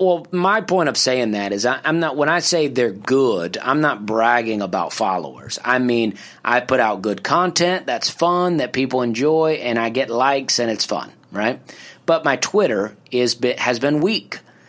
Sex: male